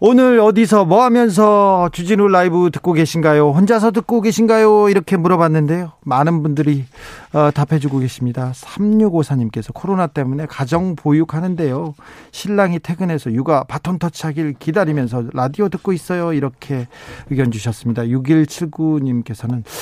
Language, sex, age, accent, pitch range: Korean, male, 40-59, native, 130-185 Hz